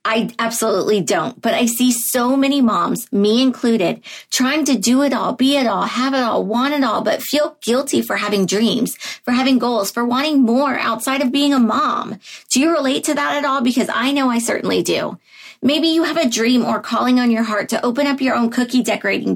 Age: 30-49